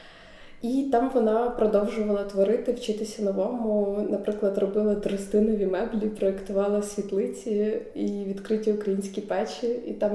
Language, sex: Ukrainian, female